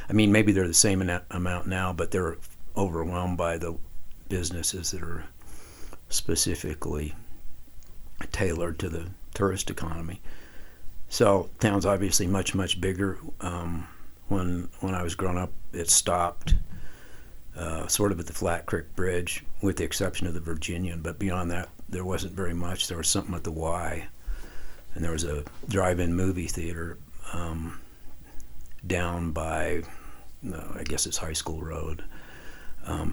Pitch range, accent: 80-100 Hz, American